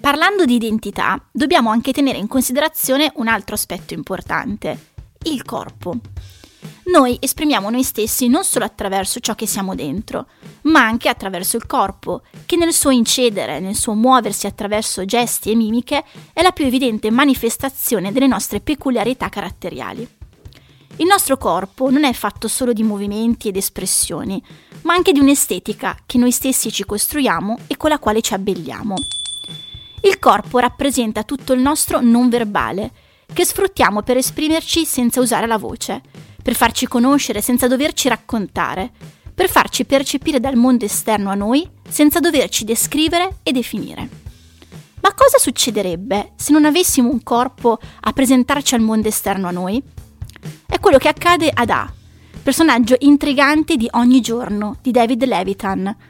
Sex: female